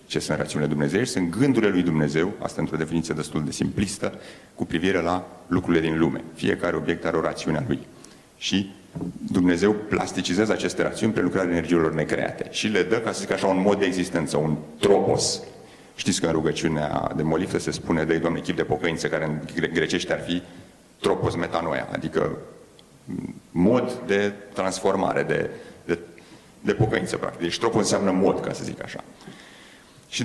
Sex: male